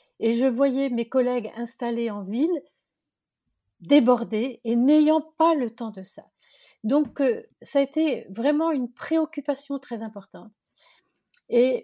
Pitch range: 225-290 Hz